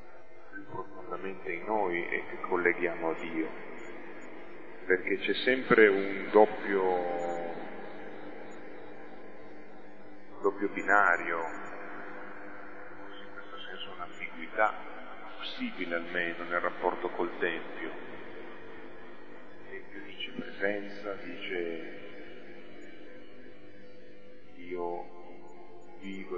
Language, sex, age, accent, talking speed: Italian, male, 40-59, native, 75 wpm